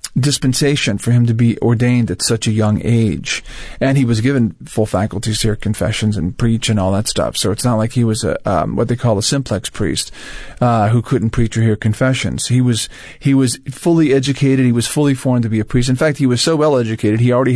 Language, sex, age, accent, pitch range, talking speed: English, male, 40-59, American, 110-130 Hz, 235 wpm